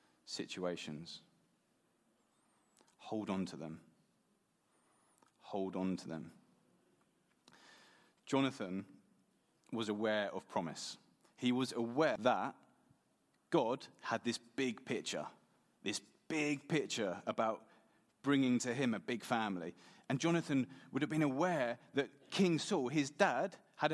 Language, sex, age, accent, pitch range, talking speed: English, male, 30-49, British, 110-140 Hz, 115 wpm